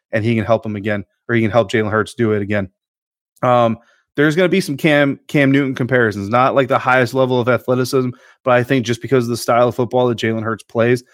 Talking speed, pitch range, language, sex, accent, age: 250 wpm, 115-130 Hz, English, male, American, 30-49